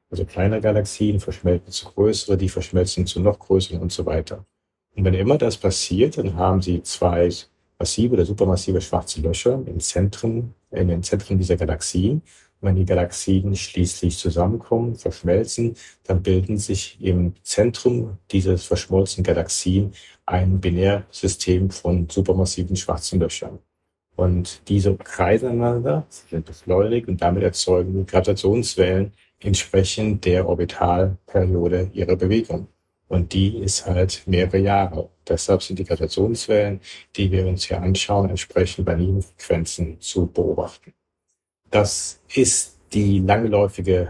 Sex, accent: male, German